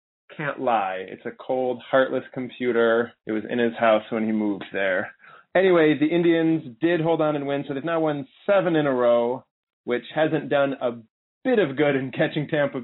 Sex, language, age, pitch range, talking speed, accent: male, English, 30-49, 120-155 Hz, 195 wpm, American